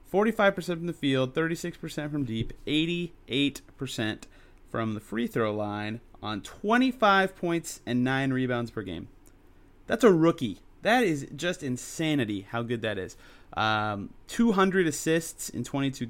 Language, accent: English, American